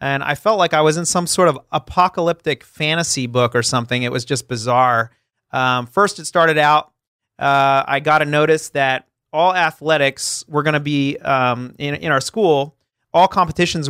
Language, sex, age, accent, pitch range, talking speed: English, male, 30-49, American, 130-160 Hz, 185 wpm